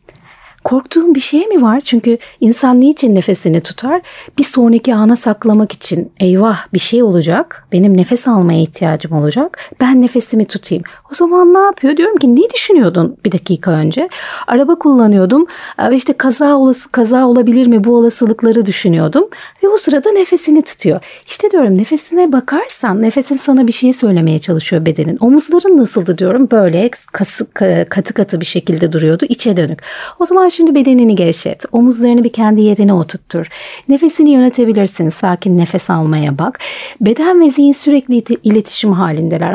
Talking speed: 155 wpm